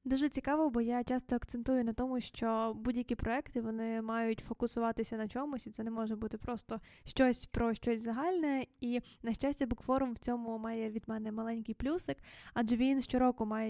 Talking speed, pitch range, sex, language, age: 185 wpm, 230-275 Hz, female, Ukrainian, 10-29